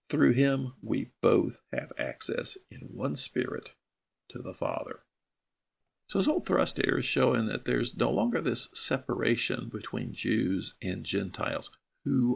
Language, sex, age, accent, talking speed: English, male, 50-69, American, 145 wpm